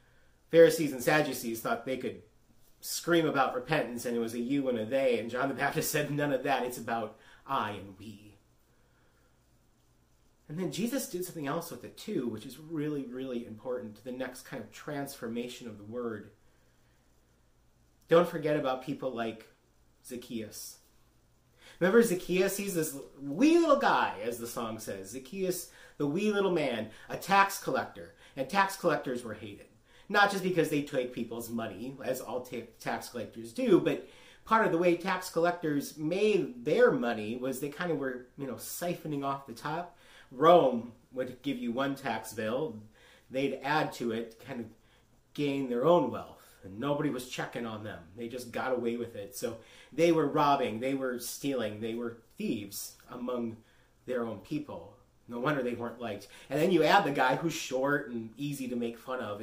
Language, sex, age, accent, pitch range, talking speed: English, male, 30-49, American, 115-160 Hz, 180 wpm